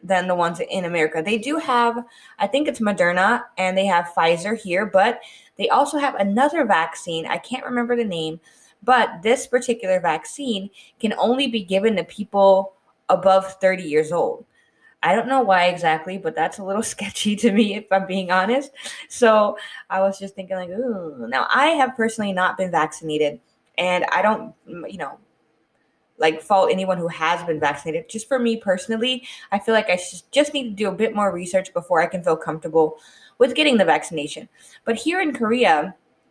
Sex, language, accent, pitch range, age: female, Korean, American, 180-250 Hz, 20-39